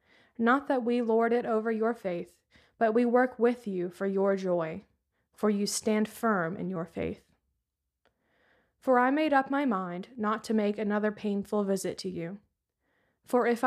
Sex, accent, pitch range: female, American, 195-235 Hz